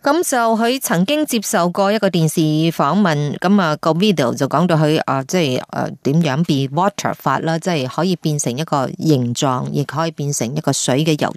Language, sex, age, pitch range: Chinese, female, 30-49, 150-210 Hz